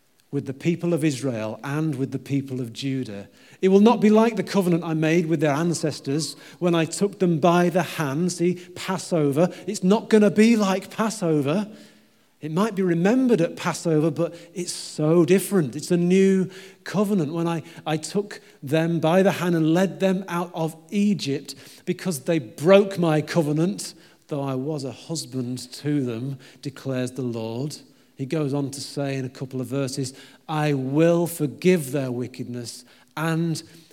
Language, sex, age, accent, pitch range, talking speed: English, male, 40-59, British, 140-180 Hz, 175 wpm